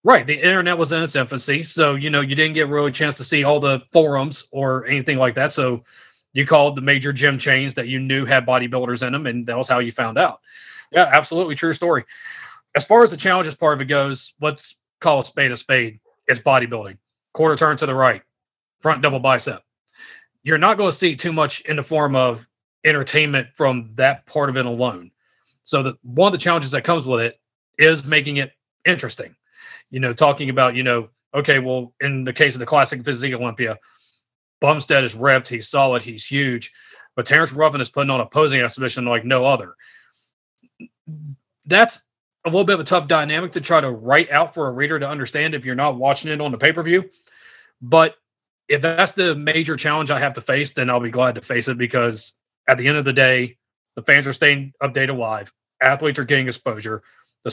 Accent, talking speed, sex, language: American, 210 wpm, male, English